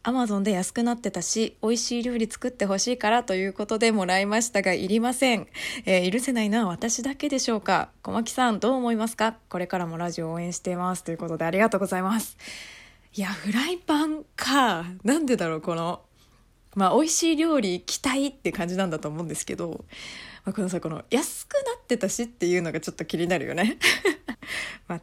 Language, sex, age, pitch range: Japanese, female, 20-39, 180-275 Hz